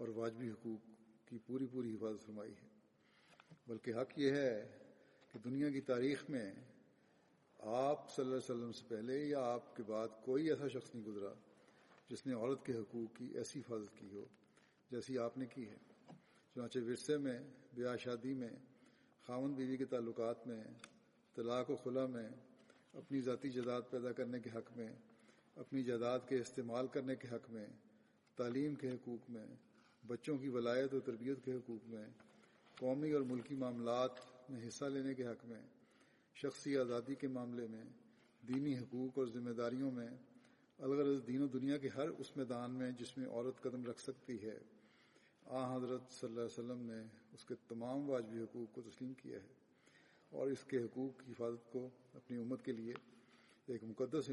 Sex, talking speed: male, 175 wpm